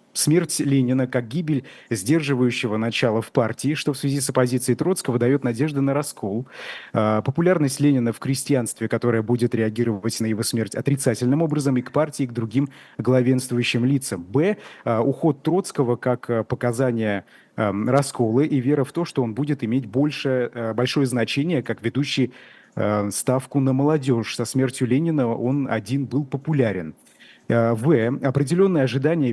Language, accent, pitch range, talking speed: Russian, native, 120-145 Hz, 140 wpm